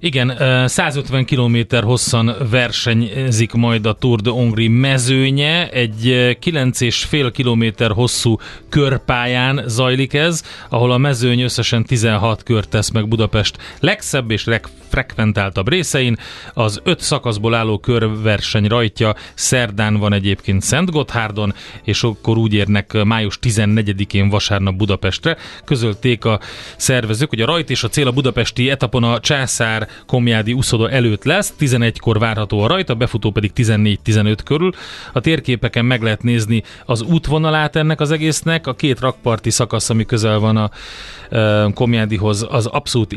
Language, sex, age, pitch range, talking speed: Hungarian, male, 30-49, 105-130 Hz, 135 wpm